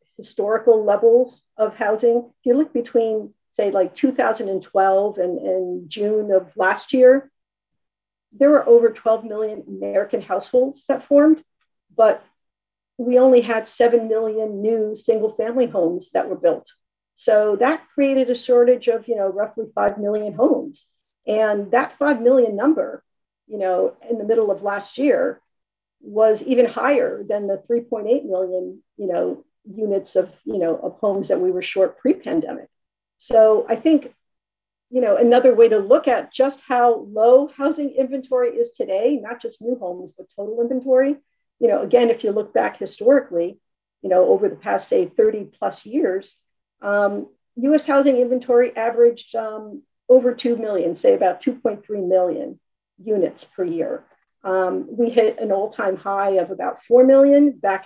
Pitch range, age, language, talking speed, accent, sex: 205-270 Hz, 50-69, English, 160 wpm, American, female